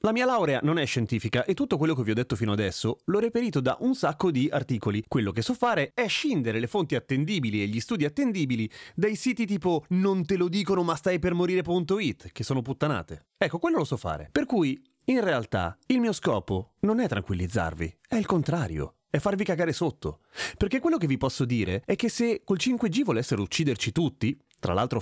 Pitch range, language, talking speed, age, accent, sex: 115-185 Hz, Italian, 210 wpm, 30-49, native, male